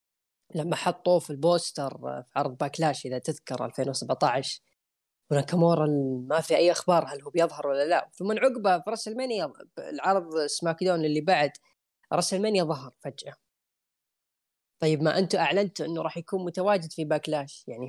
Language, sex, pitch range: Arabic, female, 140-180 Hz